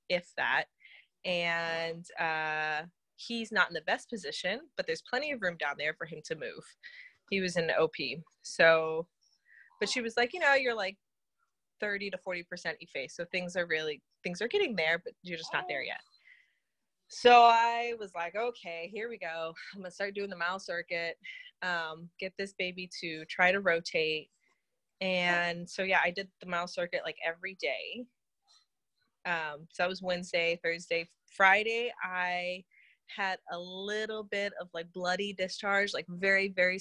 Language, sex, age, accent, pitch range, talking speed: English, female, 20-39, American, 175-230 Hz, 175 wpm